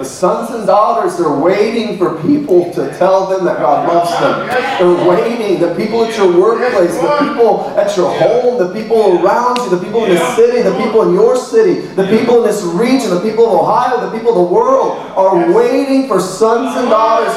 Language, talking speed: English, 210 wpm